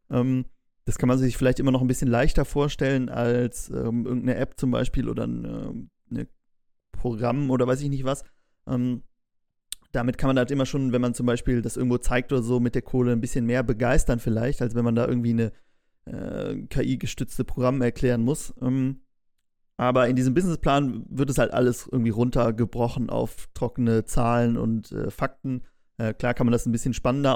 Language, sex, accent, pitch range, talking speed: German, male, German, 120-135 Hz, 185 wpm